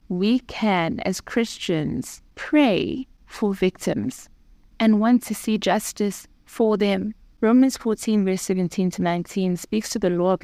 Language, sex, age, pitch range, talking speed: English, female, 20-39, 175-215 Hz, 145 wpm